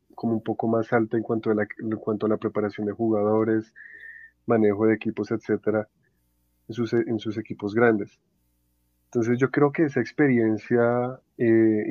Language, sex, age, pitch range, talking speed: Spanish, male, 20-39, 105-115 Hz, 165 wpm